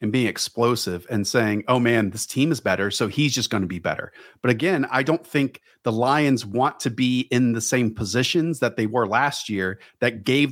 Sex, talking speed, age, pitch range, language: male, 220 wpm, 40-59, 115-165 Hz, English